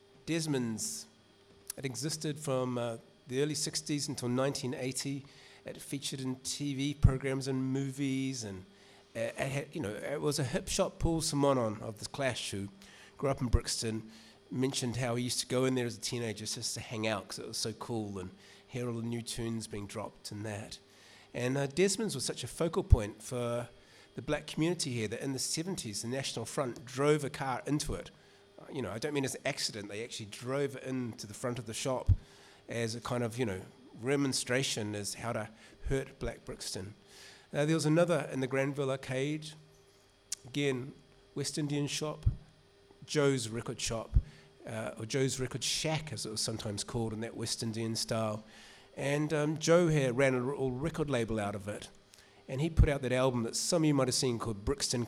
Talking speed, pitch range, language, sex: 195 wpm, 115-140 Hz, English, male